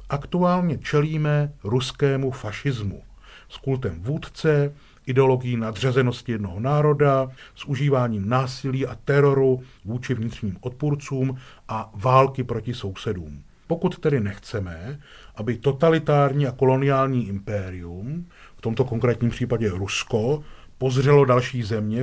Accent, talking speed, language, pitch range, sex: native, 105 wpm, Czech, 115-140 Hz, male